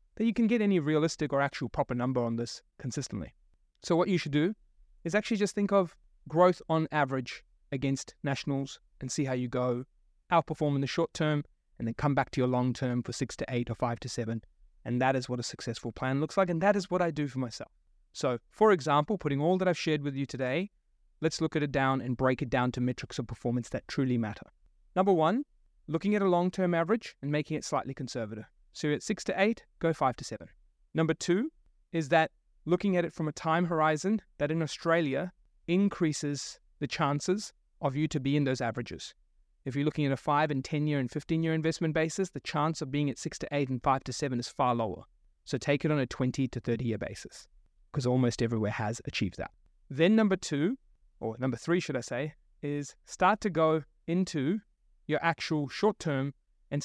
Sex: male